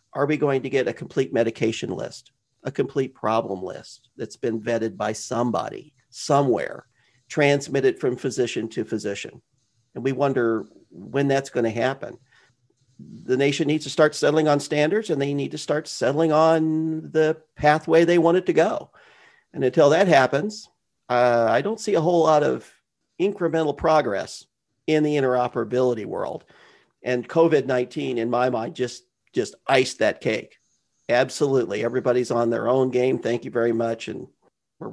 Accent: American